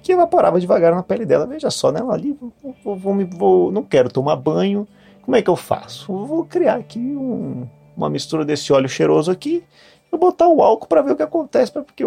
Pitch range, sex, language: 115-190 Hz, male, Portuguese